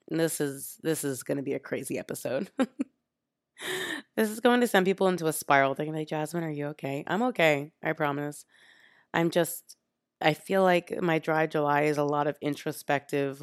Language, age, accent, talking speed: English, 20-39, American, 190 wpm